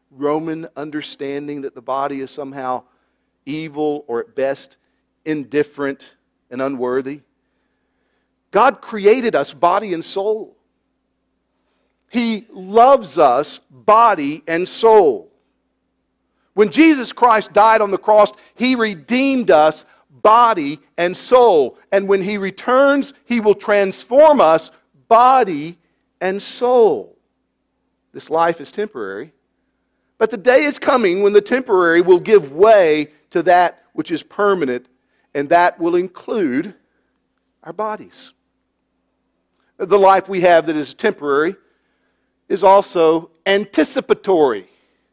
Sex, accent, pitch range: male, American, 150-235 Hz